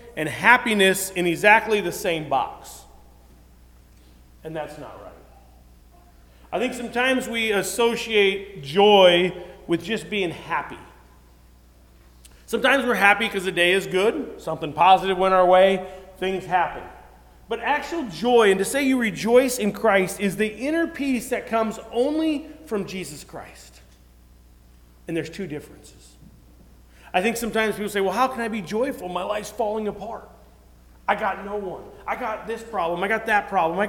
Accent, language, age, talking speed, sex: American, English, 40-59, 155 wpm, male